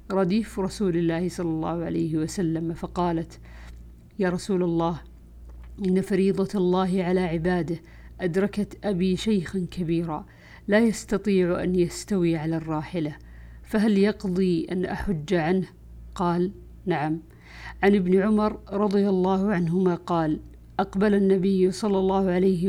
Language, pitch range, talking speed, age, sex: Arabic, 165-190 Hz, 120 wpm, 50-69, female